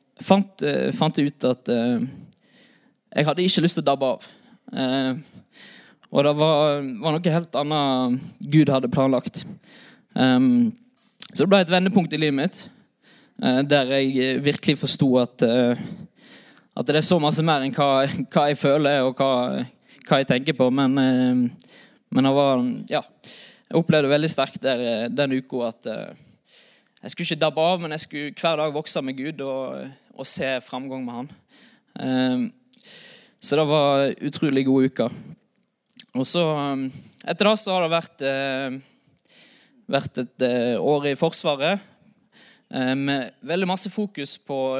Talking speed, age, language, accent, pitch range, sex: 150 wpm, 20-39, English, Swedish, 135-185 Hz, male